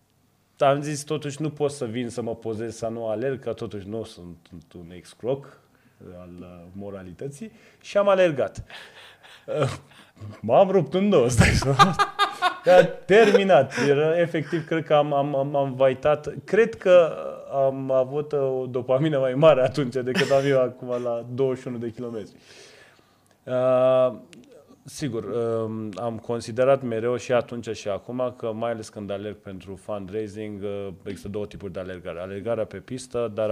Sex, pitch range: male, 105-150 Hz